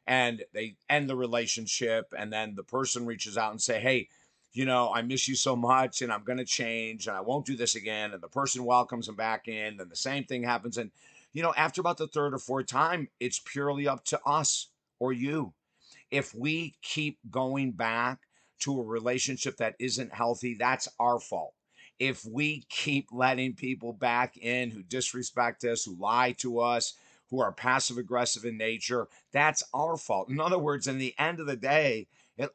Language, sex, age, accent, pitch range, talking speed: English, male, 50-69, American, 115-135 Hz, 200 wpm